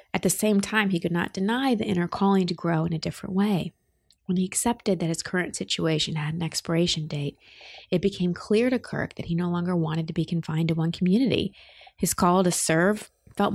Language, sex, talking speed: English, female, 215 wpm